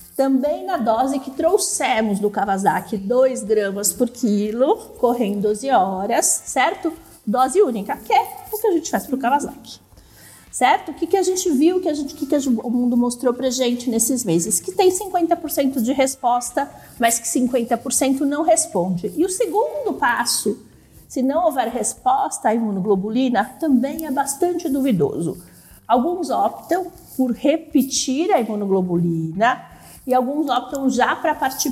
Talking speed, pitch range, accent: 155 wpm, 240-325 Hz, Brazilian